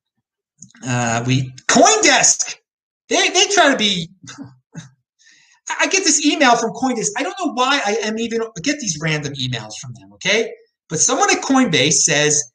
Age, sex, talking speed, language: 30-49, male, 165 wpm, English